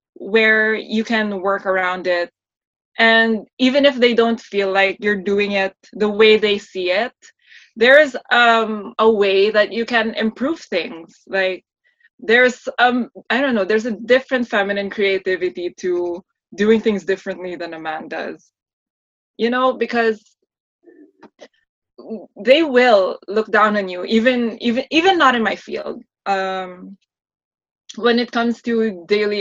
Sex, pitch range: female, 190-230 Hz